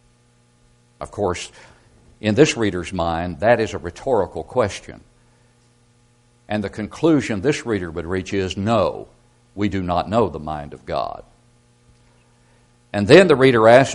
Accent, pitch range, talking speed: American, 90-120 Hz, 140 wpm